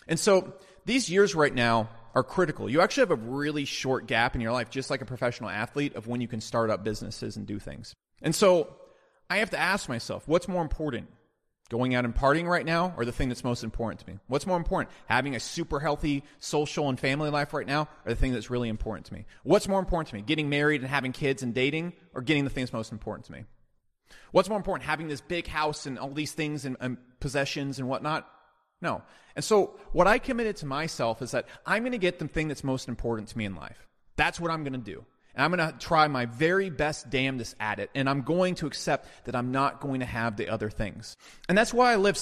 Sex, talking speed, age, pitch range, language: male, 245 wpm, 30-49, 120-165 Hz, English